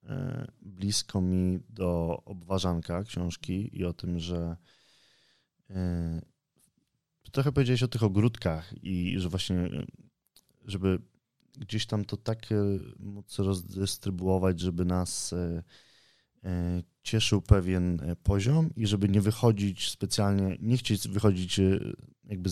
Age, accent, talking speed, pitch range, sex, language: 20-39, native, 100 wpm, 85-105 Hz, male, Polish